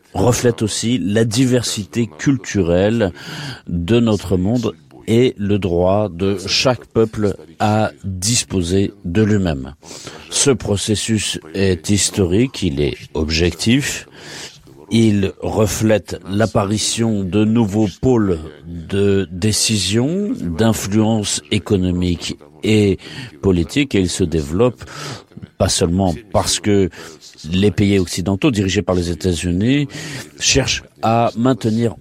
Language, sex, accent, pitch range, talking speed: French, male, French, 90-115 Hz, 105 wpm